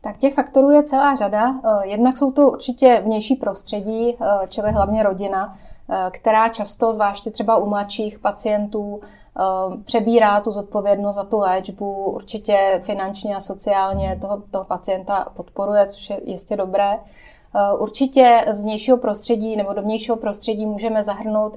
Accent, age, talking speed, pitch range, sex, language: native, 20-39, 135 wpm, 200-220 Hz, female, Czech